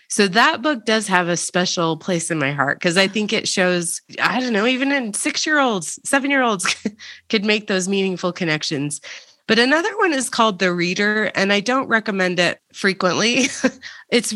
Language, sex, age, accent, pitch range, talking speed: English, female, 30-49, American, 155-205 Hz, 175 wpm